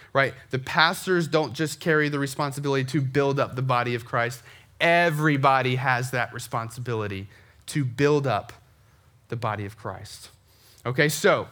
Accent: American